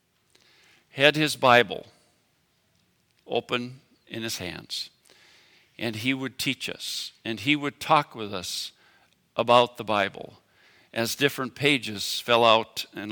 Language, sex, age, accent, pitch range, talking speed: English, male, 50-69, American, 110-140 Hz, 125 wpm